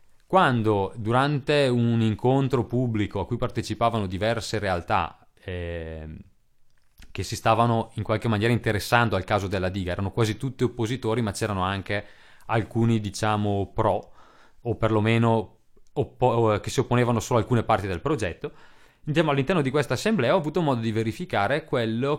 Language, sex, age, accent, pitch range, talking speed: Italian, male, 30-49, native, 100-125 Hz, 145 wpm